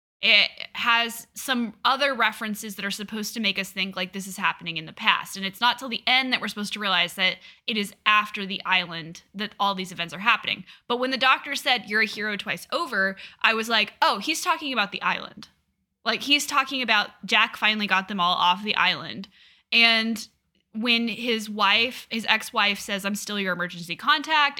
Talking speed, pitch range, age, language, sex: 205 wpm, 195-245 Hz, 10-29, English, female